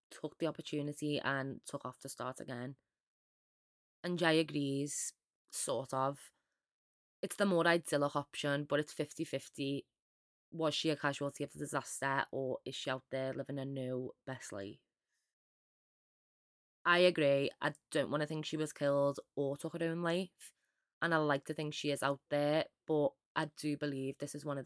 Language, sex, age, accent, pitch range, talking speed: English, female, 20-39, British, 140-160 Hz, 175 wpm